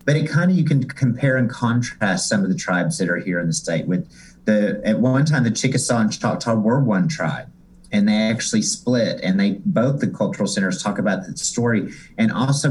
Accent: American